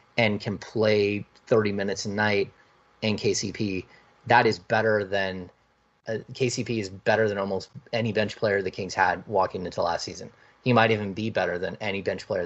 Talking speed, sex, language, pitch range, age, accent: 185 wpm, male, English, 100-115 Hz, 30-49, American